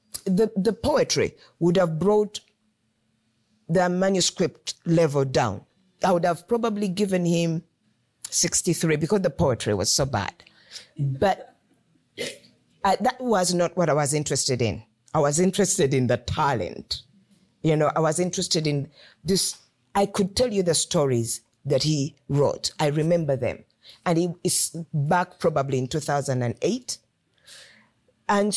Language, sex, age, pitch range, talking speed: English, female, 50-69, 135-180 Hz, 145 wpm